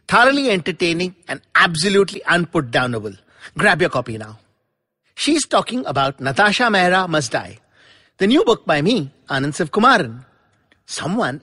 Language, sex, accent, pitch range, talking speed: English, male, Indian, 135-225 Hz, 125 wpm